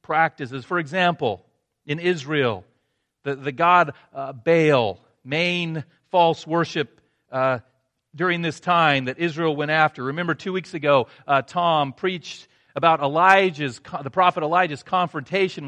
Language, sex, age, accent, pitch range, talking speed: English, male, 40-59, American, 140-185 Hz, 130 wpm